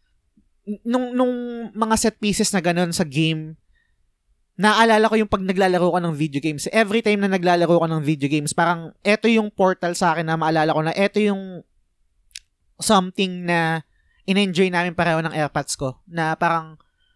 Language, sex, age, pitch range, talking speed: Filipino, male, 20-39, 155-195 Hz, 170 wpm